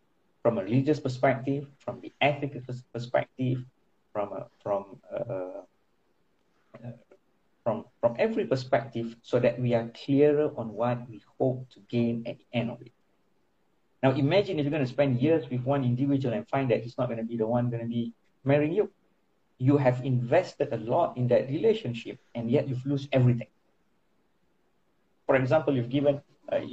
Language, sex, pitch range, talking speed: Malay, male, 120-145 Hz, 175 wpm